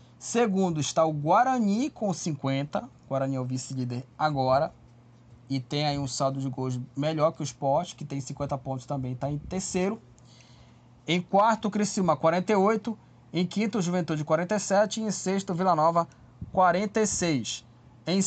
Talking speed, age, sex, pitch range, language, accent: 160 wpm, 20-39, male, 135-195 Hz, Portuguese, Brazilian